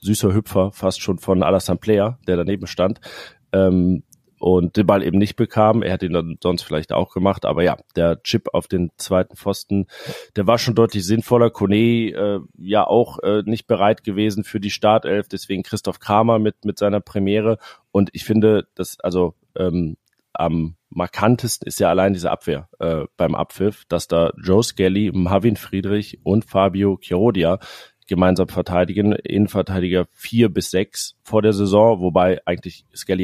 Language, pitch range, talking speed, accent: German, 90-105 Hz, 170 wpm, German